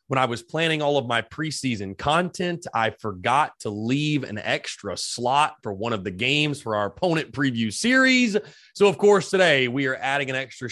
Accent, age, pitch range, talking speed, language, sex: American, 30-49, 125-165 Hz, 195 wpm, English, male